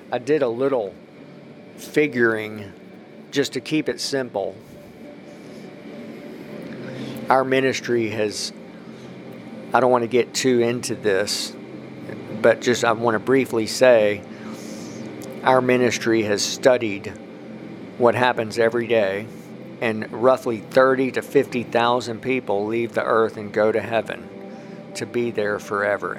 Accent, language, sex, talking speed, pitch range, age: American, English, male, 120 wpm, 105-130 Hz, 50-69